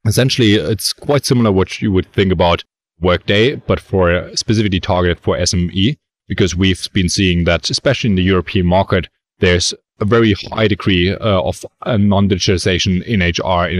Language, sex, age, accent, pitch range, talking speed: English, male, 30-49, German, 90-105 Hz, 165 wpm